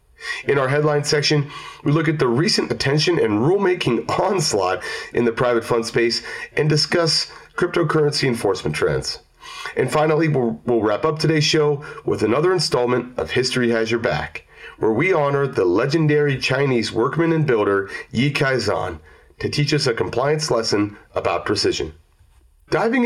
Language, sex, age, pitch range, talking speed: English, male, 30-49, 115-165 Hz, 155 wpm